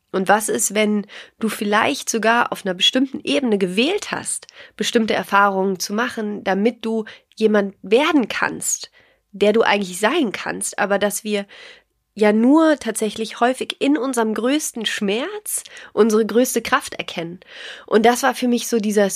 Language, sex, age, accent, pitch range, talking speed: German, female, 30-49, German, 195-255 Hz, 155 wpm